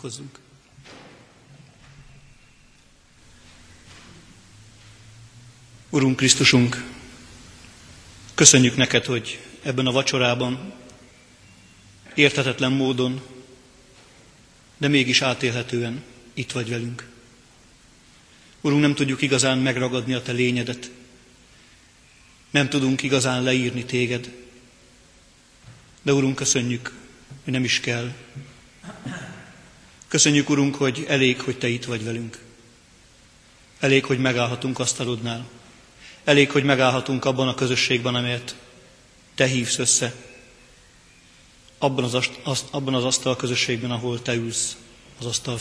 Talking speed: 90 wpm